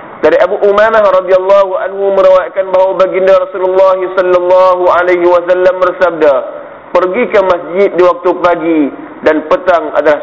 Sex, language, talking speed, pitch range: male, Malay, 135 wpm, 170-195 Hz